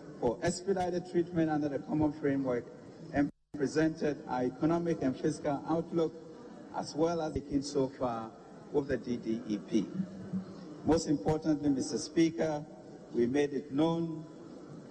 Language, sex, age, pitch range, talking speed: English, male, 50-69, 140-160 Hz, 125 wpm